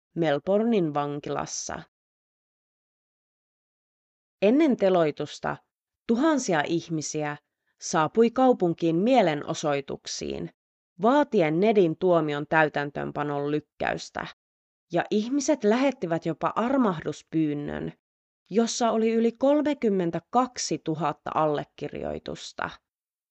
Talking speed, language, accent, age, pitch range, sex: 65 wpm, Finnish, native, 30-49, 150-225 Hz, female